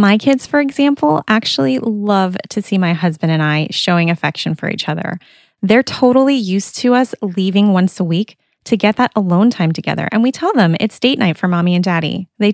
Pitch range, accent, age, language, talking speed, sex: 175-225 Hz, American, 20-39, English, 210 wpm, female